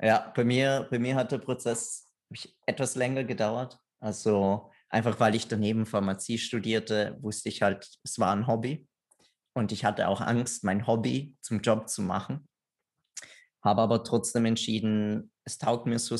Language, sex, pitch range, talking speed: German, male, 105-125 Hz, 160 wpm